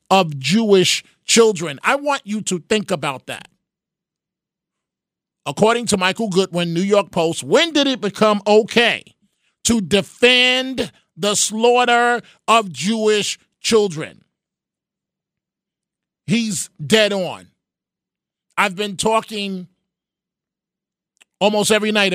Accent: American